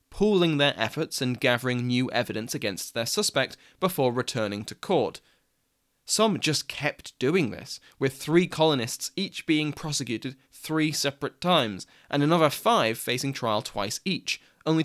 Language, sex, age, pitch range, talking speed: English, male, 20-39, 120-150 Hz, 145 wpm